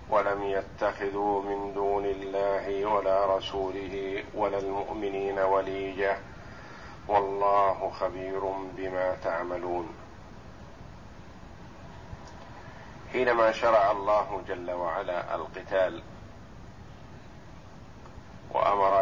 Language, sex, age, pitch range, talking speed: Arabic, male, 50-69, 95-105 Hz, 65 wpm